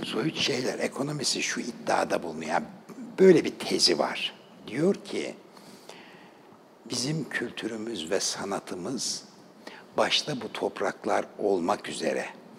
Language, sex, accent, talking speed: Turkish, male, native, 100 wpm